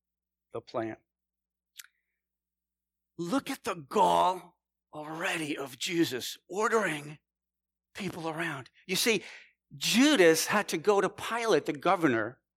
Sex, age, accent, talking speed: male, 50-69, American, 105 wpm